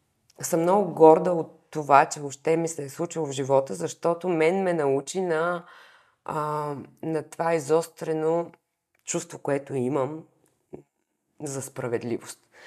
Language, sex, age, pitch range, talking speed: Bulgarian, female, 20-39, 140-160 Hz, 125 wpm